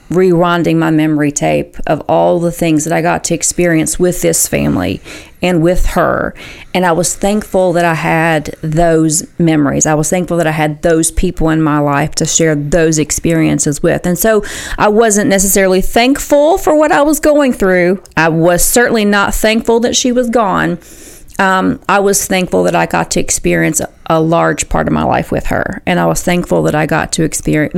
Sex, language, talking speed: female, English, 195 wpm